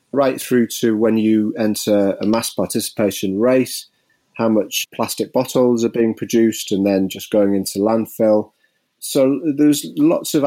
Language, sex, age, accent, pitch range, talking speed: English, male, 30-49, British, 100-115 Hz, 155 wpm